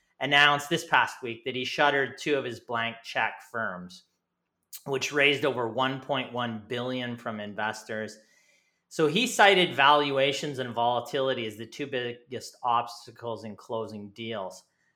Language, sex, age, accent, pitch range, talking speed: English, male, 30-49, American, 115-145 Hz, 135 wpm